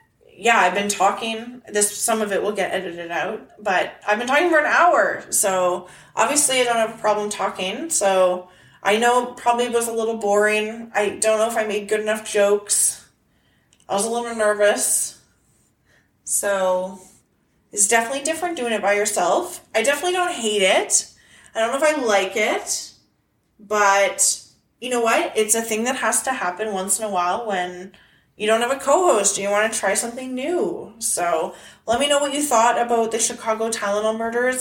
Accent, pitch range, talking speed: American, 205-240 Hz, 190 wpm